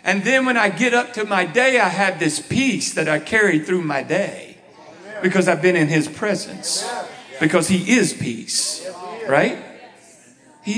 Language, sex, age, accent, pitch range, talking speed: English, male, 50-69, American, 195-295 Hz, 175 wpm